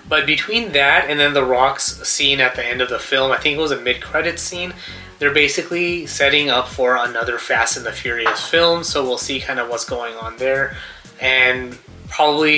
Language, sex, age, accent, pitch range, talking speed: English, male, 20-39, American, 125-150 Hz, 205 wpm